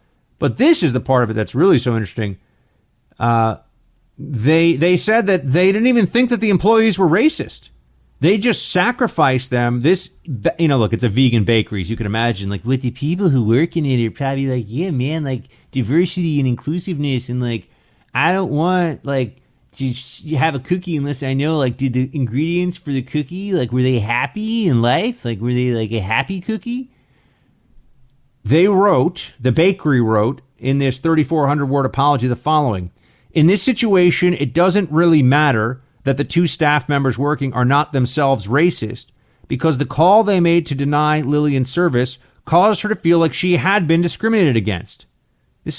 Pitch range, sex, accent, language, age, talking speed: 125-175 Hz, male, American, English, 30-49, 180 wpm